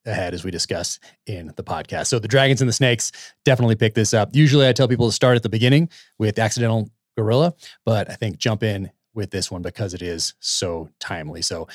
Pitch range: 100-120 Hz